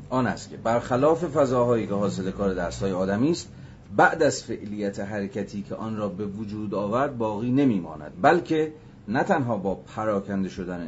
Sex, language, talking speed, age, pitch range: male, Persian, 165 wpm, 40-59, 95-120 Hz